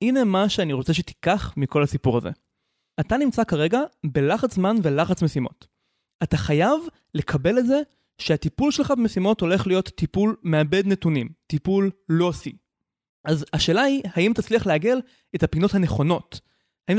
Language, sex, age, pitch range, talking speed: Hebrew, male, 20-39, 150-230 Hz, 145 wpm